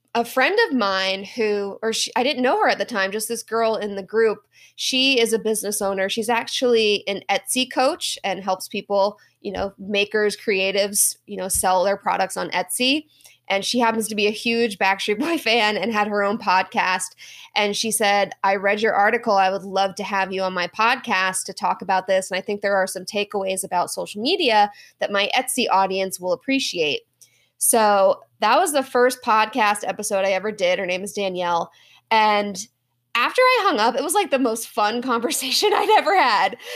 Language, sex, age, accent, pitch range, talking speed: English, female, 20-39, American, 195-250 Hz, 200 wpm